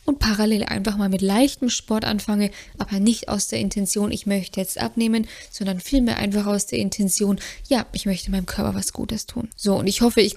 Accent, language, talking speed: German, German, 210 wpm